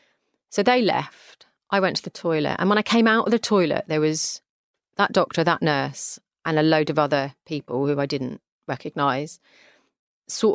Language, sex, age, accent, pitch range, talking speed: English, female, 30-49, British, 140-185 Hz, 190 wpm